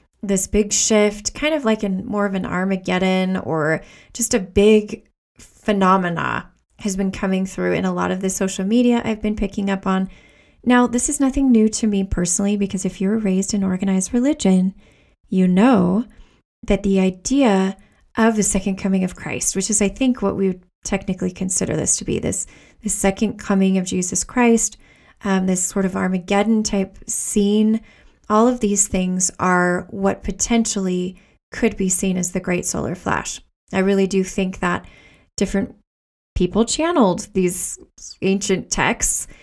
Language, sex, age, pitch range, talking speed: English, female, 20-39, 190-215 Hz, 165 wpm